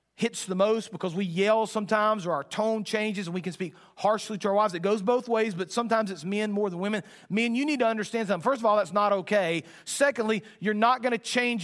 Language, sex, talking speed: English, male, 245 wpm